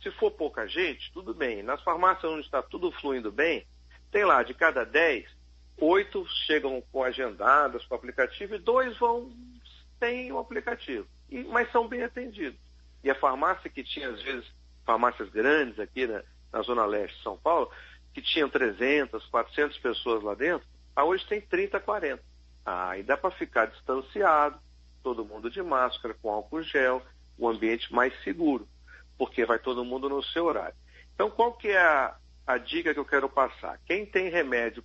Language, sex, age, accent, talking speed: Portuguese, male, 50-69, Brazilian, 175 wpm